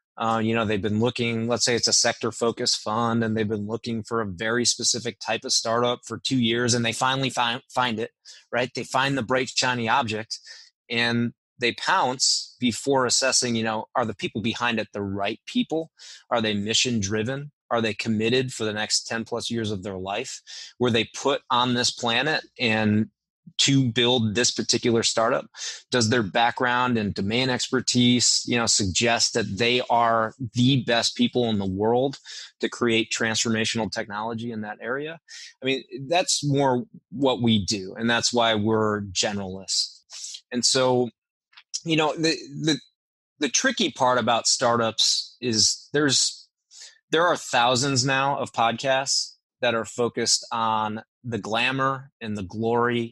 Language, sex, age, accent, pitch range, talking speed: English, male, 20-39, American, 110-125 Hz, 165 wpm